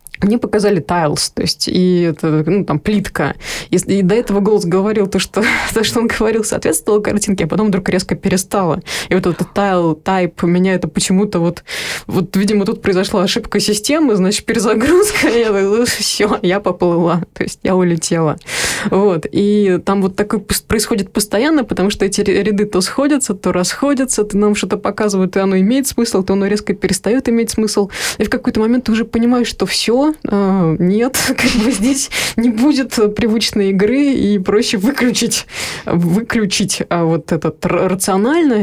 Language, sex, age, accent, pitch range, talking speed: Russian, female, 20-39, native, 185-220 Hz, 165 wpm